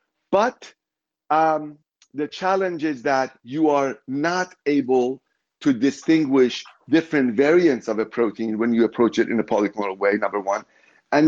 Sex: male